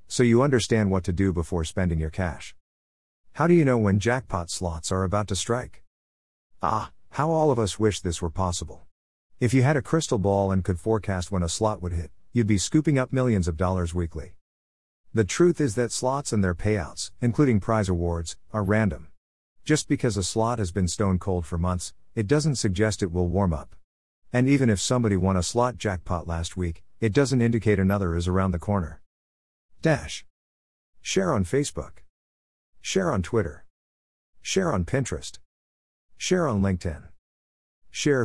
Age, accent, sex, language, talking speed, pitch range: 50-69, American, male, English, 180 wpm, 75-110 Hz